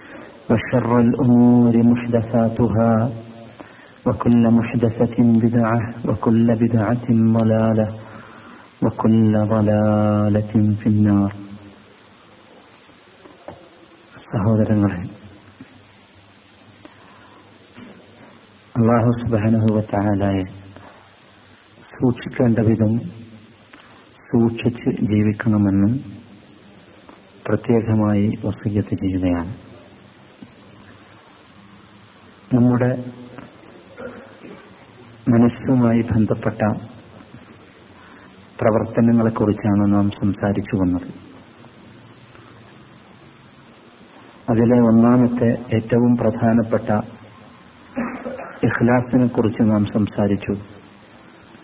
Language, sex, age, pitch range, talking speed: Malayalam, male, 50-69, 105-120 Hz, 45 wpm